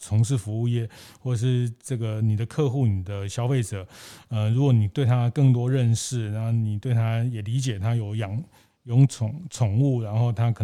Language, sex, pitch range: Chinese, male, 110-135 Hz